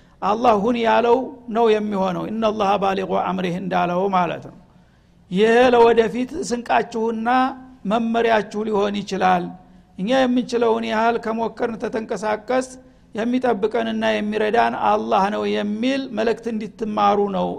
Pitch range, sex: 205-240 Hz, male